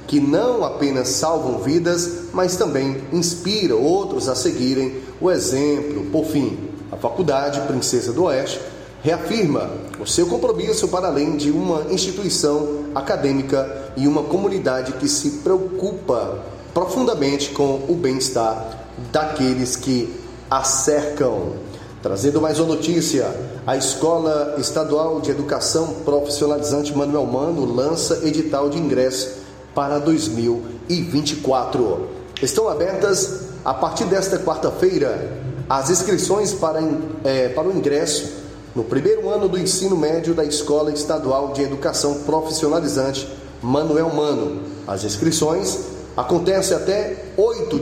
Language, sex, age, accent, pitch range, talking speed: Portuguese, male, 30-49, Brazilian, 135-180 Hz, 115 wpm